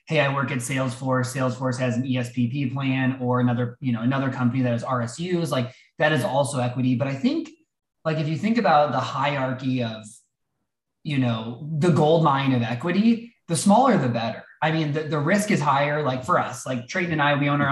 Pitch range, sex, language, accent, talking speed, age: 125-160 Hz, male, English, American, 215 wpm, 20-39